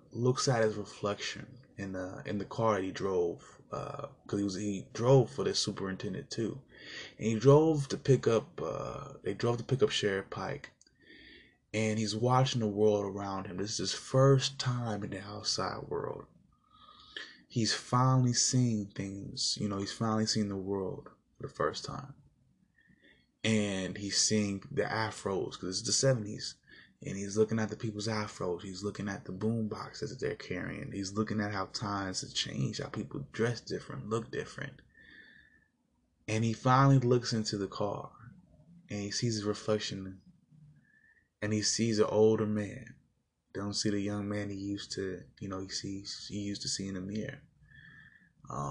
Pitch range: 100-120 Hz